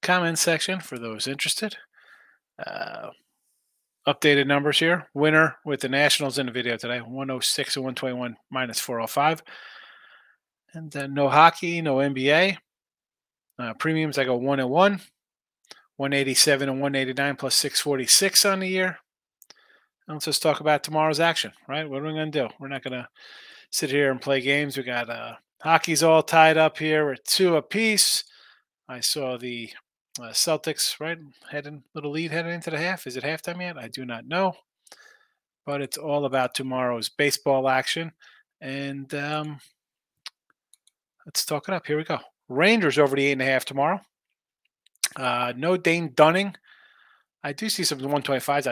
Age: 30-49